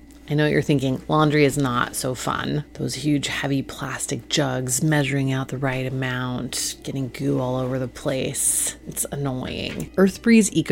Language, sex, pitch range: English, female, 135-175 Hz